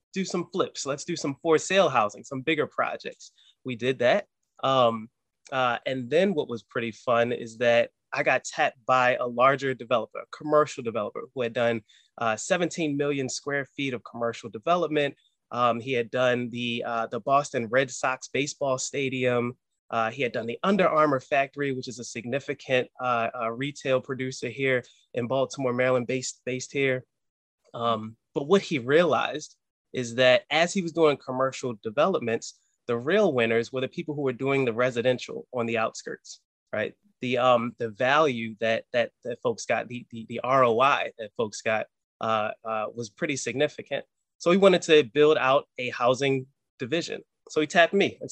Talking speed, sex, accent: 180 wpm, male, American